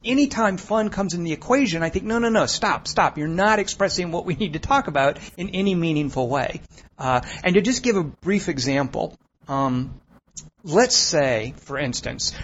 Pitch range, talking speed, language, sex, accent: 135-180 Hz, 195 wpm, English, male, American